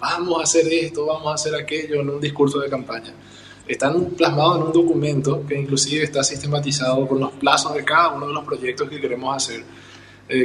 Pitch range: 135-155 Hz